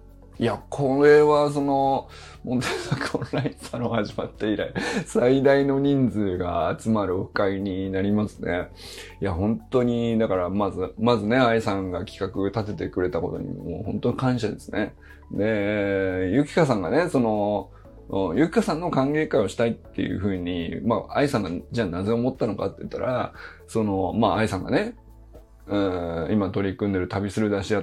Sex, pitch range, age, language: male, 95-140 Hz, 20-39, Japanese